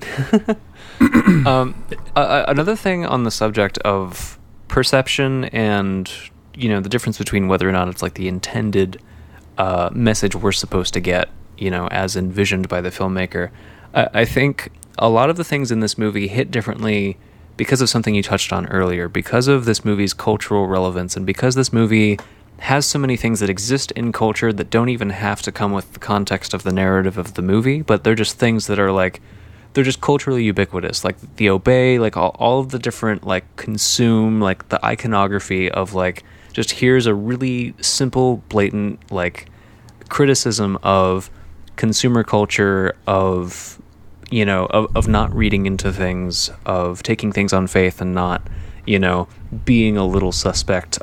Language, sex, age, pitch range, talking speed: English, male, 20-39, 95-115 Hz, 175 wpm